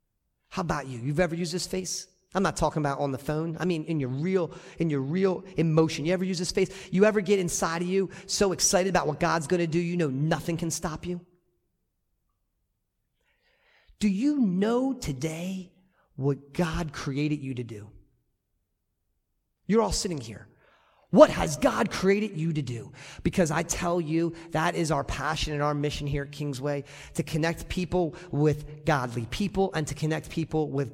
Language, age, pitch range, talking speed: English, 40-59, 140-180 Hz, 180 wpm